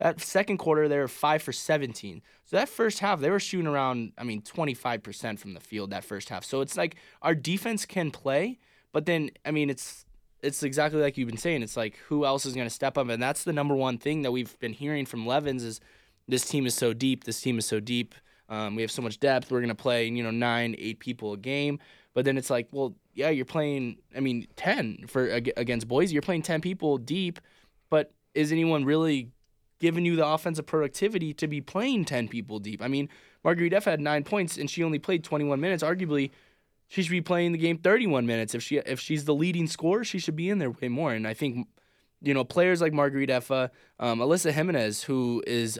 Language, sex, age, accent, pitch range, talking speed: English, male, 20-39, American, 125-165 Hz, 230 wpm